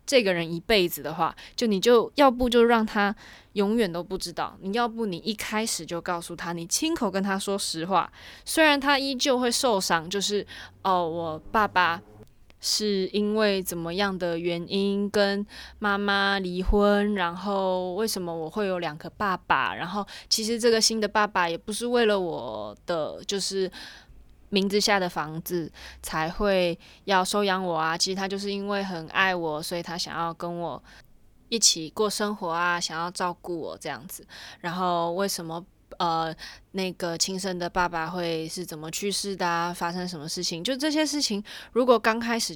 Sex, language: female, Chinese